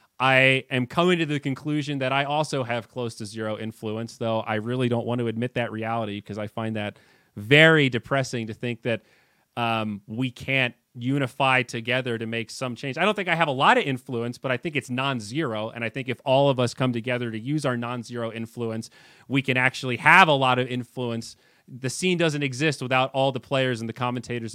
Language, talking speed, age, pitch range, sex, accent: English, 215 wpm, 30-49, 115-140 Hz, male, American